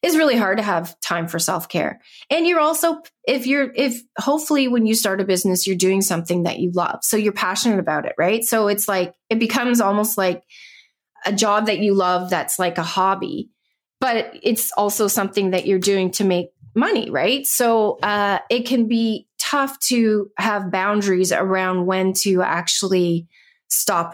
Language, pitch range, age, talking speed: English, 190-225 Hz, 30-49, 180 wpm